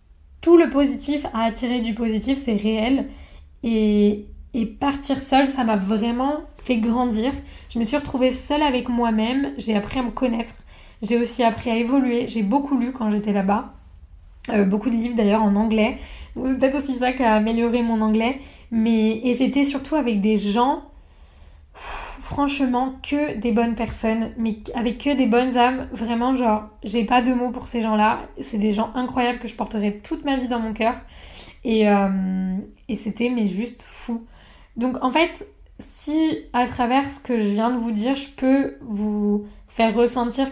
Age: 10-29